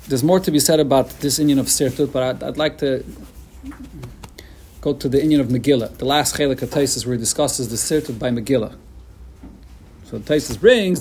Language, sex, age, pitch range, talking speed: English, male, 40-59, 140-185 Hz, 190 wpm